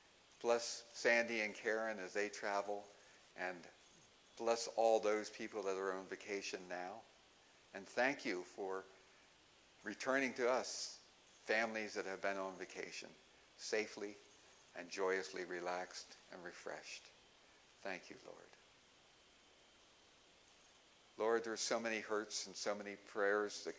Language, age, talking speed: English, 50-69, 125 wpm